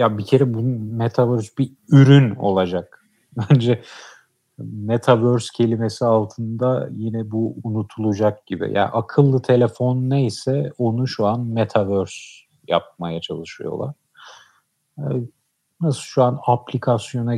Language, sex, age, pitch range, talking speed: Turkish, male, 50-69, 100-135 Hz, 105 wpm